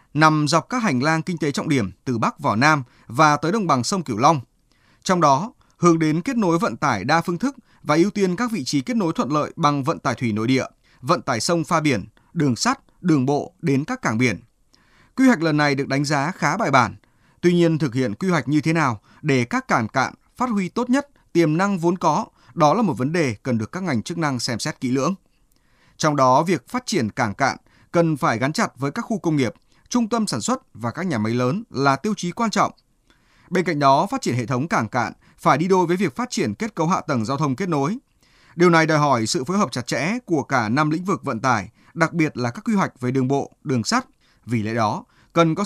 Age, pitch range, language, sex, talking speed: 20-39, 130-185 Hz, Vietnamese, male, 250 wpm